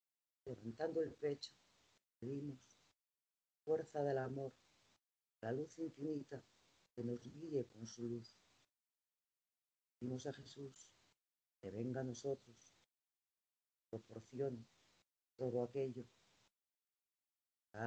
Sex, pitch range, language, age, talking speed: female, 110-140 Hz, Spanish, 50-69, 90 wpm